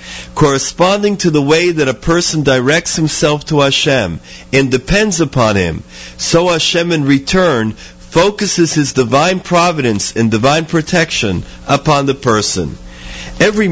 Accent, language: American, English